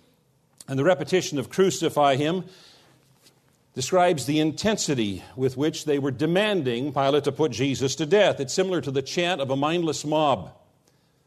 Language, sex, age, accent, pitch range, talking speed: English, male, 50-69, American, 125-155 Hz, 155 wpm